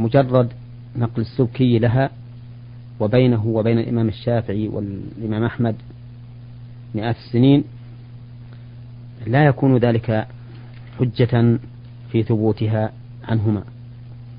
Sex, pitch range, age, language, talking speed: male, 115-120 Hz, 40-59, Arabic, 80 wpm